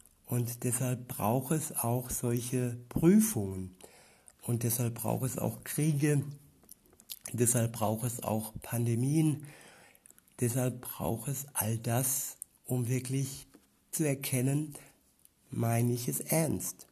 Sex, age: male, 60-79